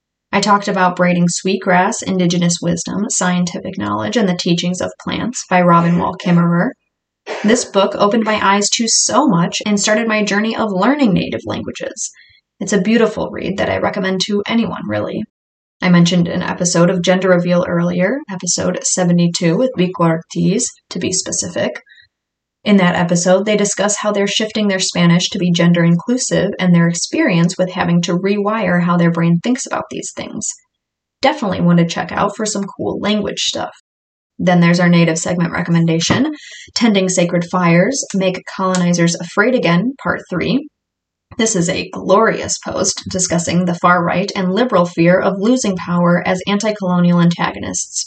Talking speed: 165 wpm